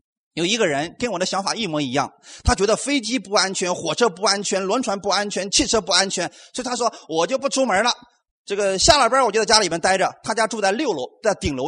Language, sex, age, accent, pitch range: Chinese, male, 30-49, native, 180-285 Hz